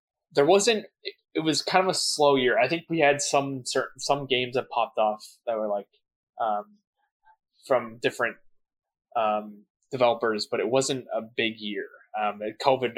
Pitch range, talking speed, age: 120-165 Hz, 165 wpm, 20-39